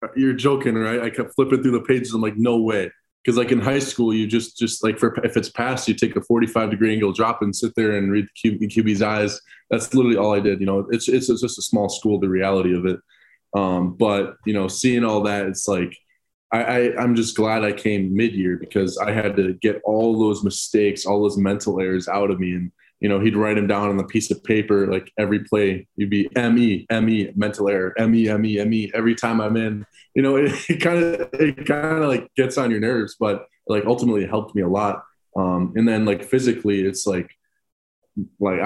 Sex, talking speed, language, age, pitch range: male, 235 wpm, English, 20-39, 100-115 Hz